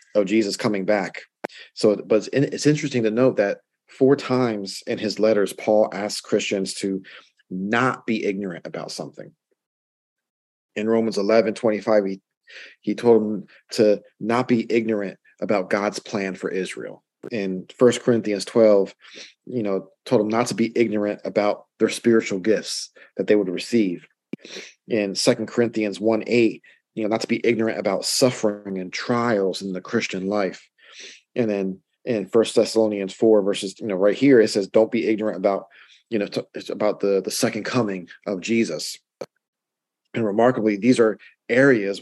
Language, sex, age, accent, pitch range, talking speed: English, male, 40-59, American, 100-115 Hz, 165 wpm